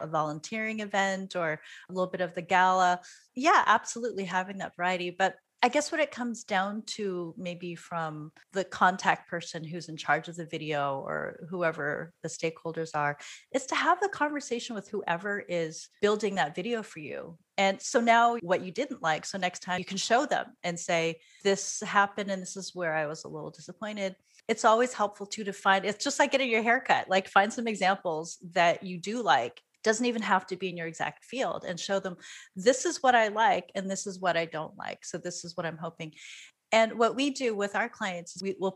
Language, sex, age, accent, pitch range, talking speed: English, female, 30-49, American, 170-225 Hz, 215 wpm